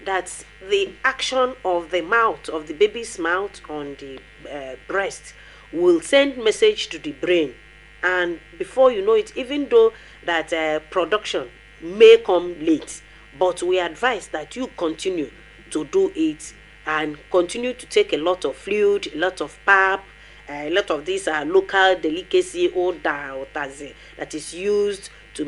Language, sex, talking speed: English, female, 160 wpm